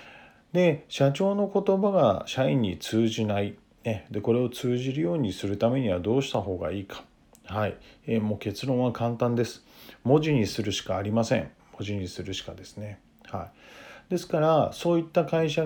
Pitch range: 105-145 Hz